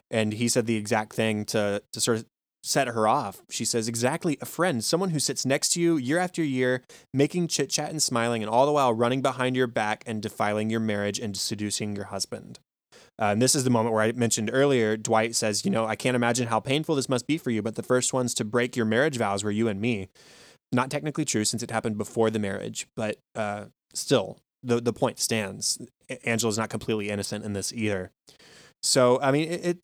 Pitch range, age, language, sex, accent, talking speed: 110-125 Hz, 20-39, English, male, American, 230 wpm